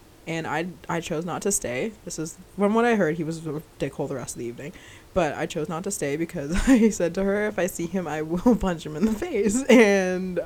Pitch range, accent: 150-190 Hz, American